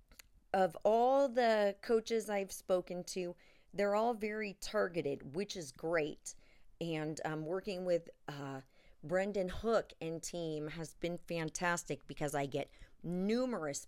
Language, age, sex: English, 30-49, female